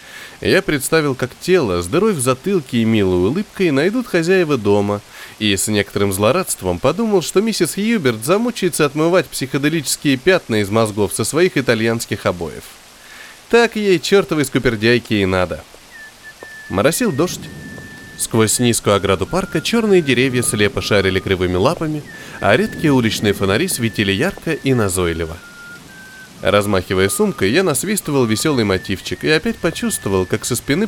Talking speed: 135 wpm